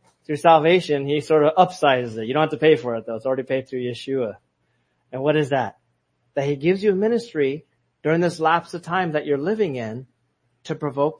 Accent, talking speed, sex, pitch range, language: American, 220 wpm, male, 125-155 Hz, English